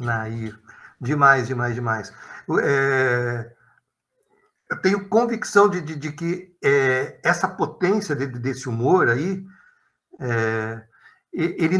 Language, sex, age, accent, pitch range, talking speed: Portuguese, male, 60-79, Brazilian, 135-190 Hz, 85 wpm